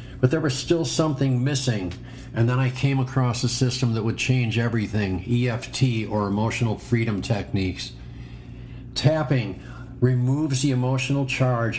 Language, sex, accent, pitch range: English, male, American, 115-130 Hz